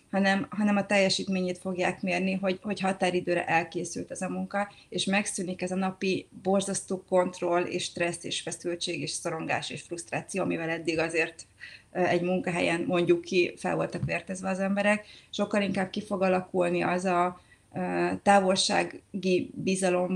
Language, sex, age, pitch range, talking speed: Hungarian, female, 30-49, 175-195 Hz, 145 wpm